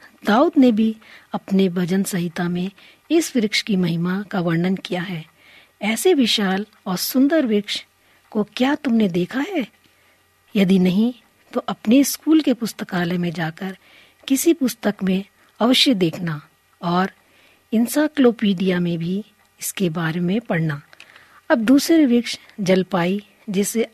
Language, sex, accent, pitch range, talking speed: Hindi, female, native, 185-240 Hz, 130 wpm